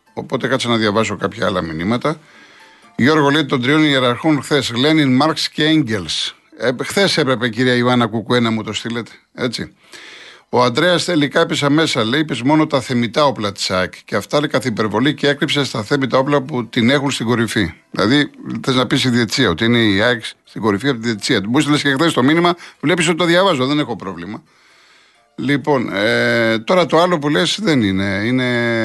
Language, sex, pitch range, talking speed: Greek, male, 110-145 Hz, 185 wpm